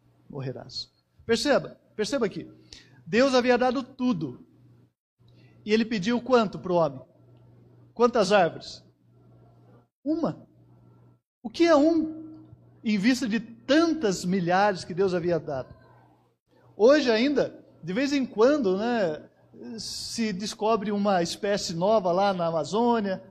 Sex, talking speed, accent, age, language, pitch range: male, 120 wpm, Brazilian, 50-69, Portuguese, 175-250 Hz